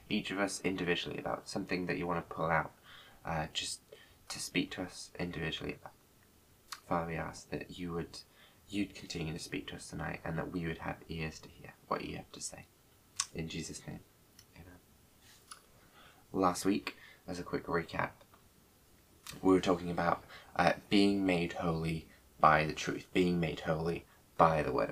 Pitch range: 80-95 Hz